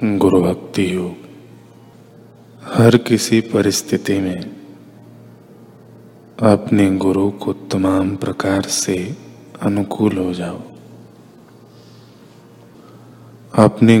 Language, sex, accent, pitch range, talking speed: Hindi, male, native, 95-115 Hz, 75 wpm